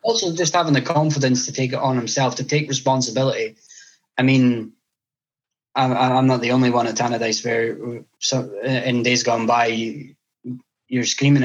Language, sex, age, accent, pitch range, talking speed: English, male, 10-29, British, 115-135 Hz, 160 wpm